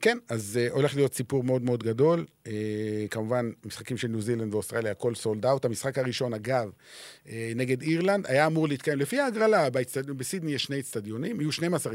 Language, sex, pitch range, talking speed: Hebrew, male, 120-165 Hz, 165 wpm